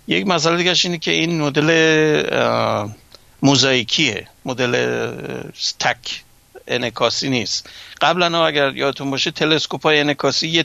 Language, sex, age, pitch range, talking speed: Persian, male, 60-79, 125-160 Hz, 100 wpm